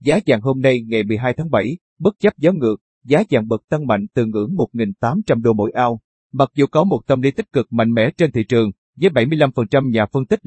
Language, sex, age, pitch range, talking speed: Vietnamese, male, 30-49, 115-145 Hz, 235 wpm